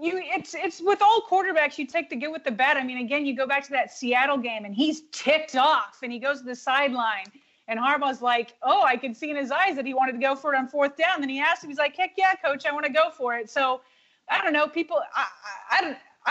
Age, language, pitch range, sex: 30-49, English, 245-295 Hz, female